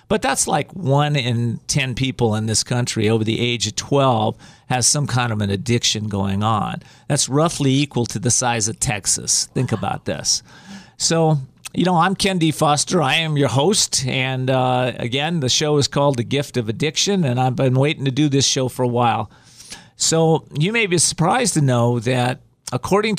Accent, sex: American, male